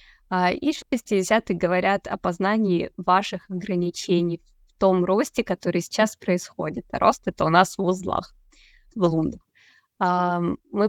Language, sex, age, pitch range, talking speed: Russian, female, 20-39, 180-215 Hz, 125 wpm